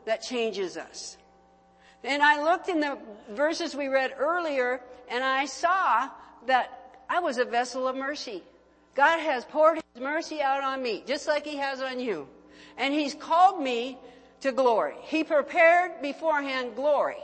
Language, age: English, 60-79